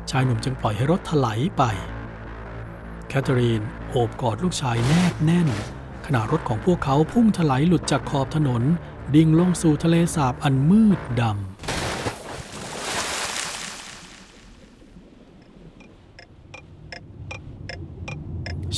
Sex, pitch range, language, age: male, 115-160 Hz, Thai, 60-79